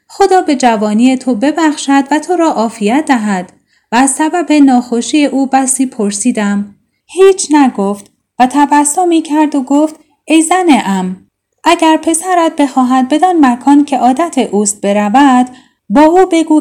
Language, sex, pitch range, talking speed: Persian, female, 230-310 Hz, 145 wpm